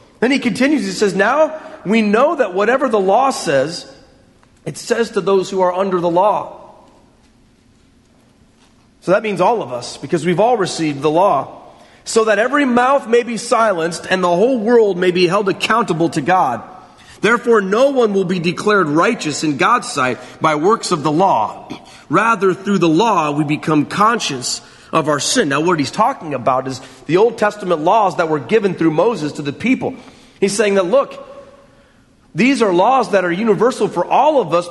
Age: 40-59